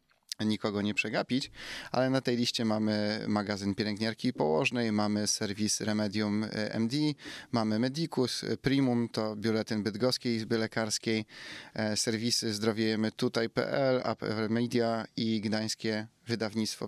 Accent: native